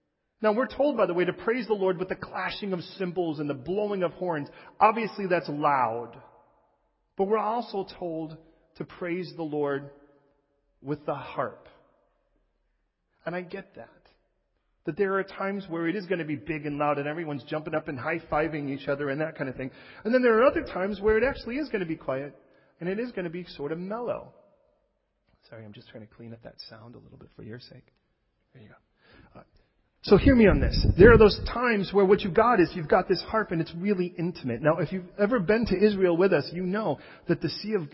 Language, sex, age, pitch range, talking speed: English, male, 40-59, 140-190 Hz, 225 wpm